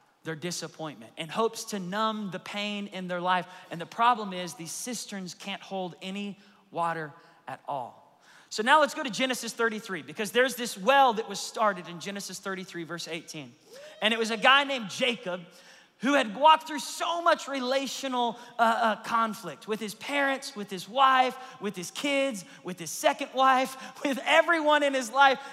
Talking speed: 180 wpm